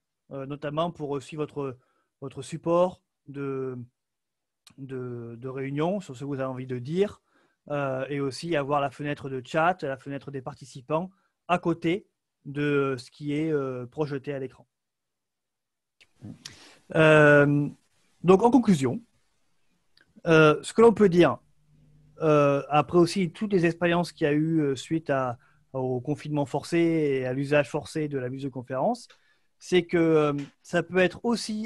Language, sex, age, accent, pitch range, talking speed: French, male, 30-49, French, 140-180 Hz, 150 wpm